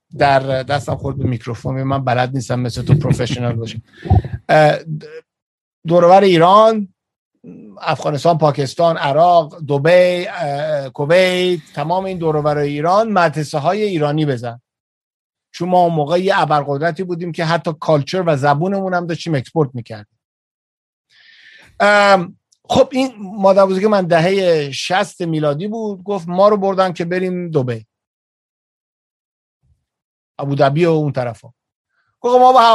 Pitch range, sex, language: 140-185 Hz, male, Persian